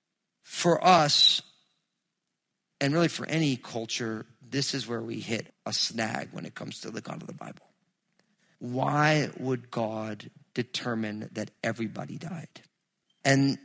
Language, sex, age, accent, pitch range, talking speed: English, male, 40-59, American, 115-160 Hz, 135 wpm